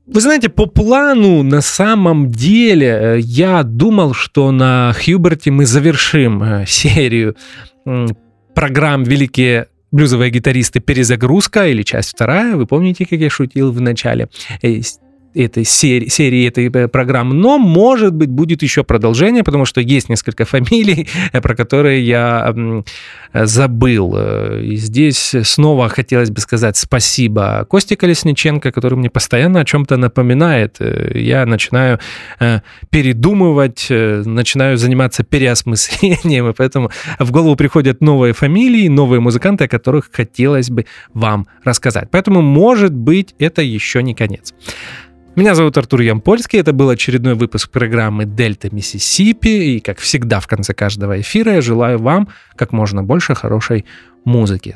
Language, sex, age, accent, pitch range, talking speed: Russian, male, 30-49, native, 115-155 Hz, 130 wpm